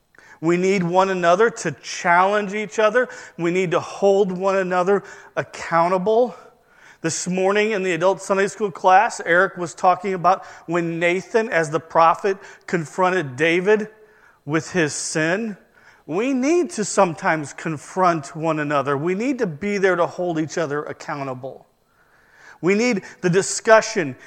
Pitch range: 165-215 Hz